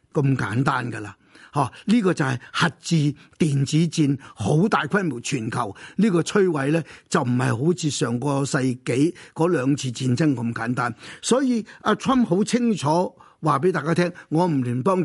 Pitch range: 140-180 Hz